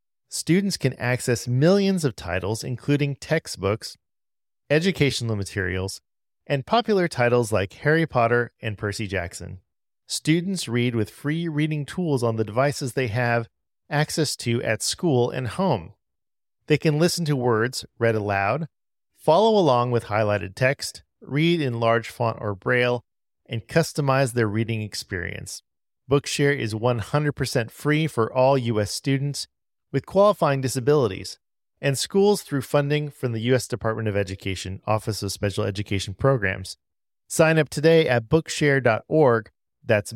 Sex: male